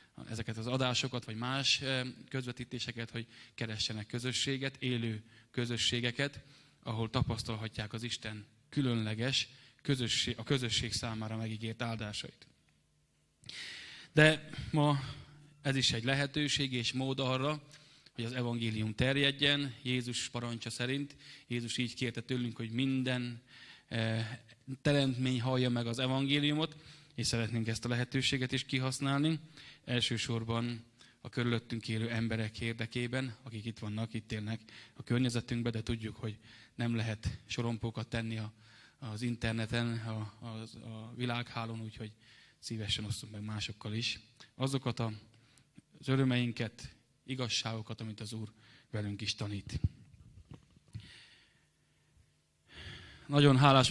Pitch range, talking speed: 115-130 Hz, 110 wpm